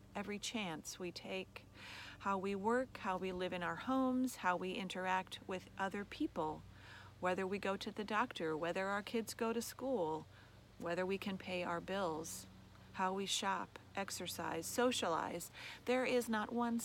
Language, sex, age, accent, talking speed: English, female, 40-59, American, 165 wpm